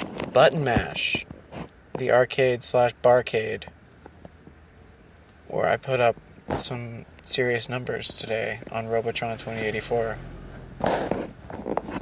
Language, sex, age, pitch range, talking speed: English, male, 20-39, 110-130 Hz, 85 wpm